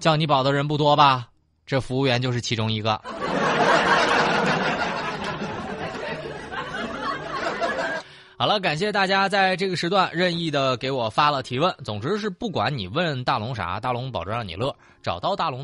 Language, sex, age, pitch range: Chinese, male, 20-39, 105-155 Hz